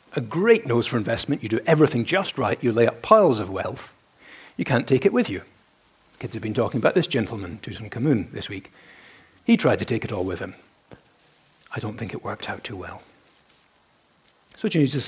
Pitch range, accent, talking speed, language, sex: 115-165 Hz, British, 200 wpm, English, male